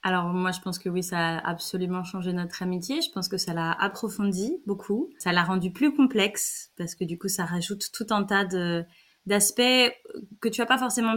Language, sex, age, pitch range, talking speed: French, female, 20-39, 180-225 Hz, 215 wpm